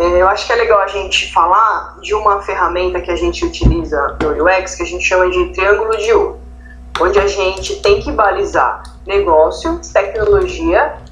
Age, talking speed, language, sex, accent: 20-39, 180 wpm, Portuguese, female, Brazilian